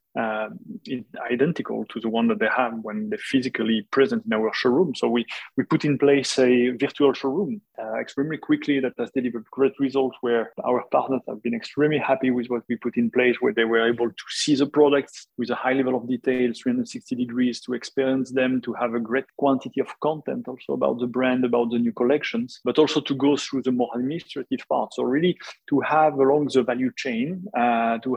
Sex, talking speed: male, 210 wpm